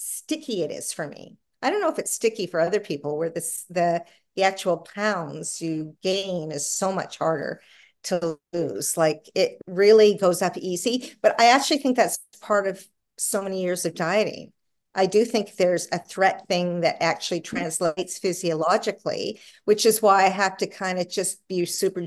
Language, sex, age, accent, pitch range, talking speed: English, female, 50-69, American, 175-220 Hz, 185 wpm